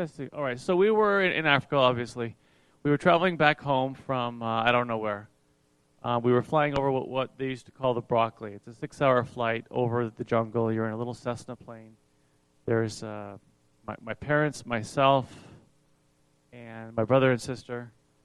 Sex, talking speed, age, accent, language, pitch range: male, 190 wpm, 30-49, American, English, 115-140 Hz